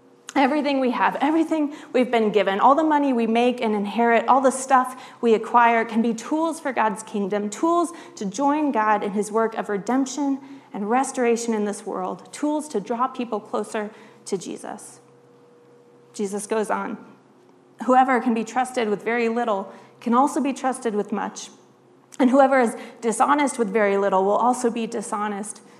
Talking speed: 170 wpm